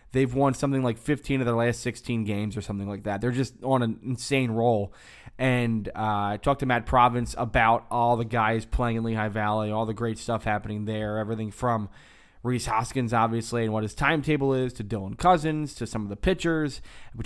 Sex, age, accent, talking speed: male, 20-39, American, 210 wpm